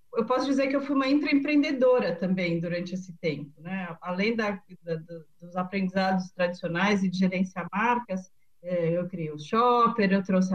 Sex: female